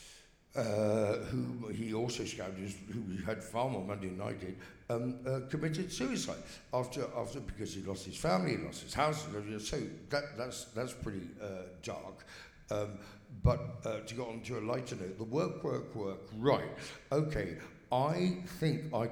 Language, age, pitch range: English, 60-79, 100-140 Hz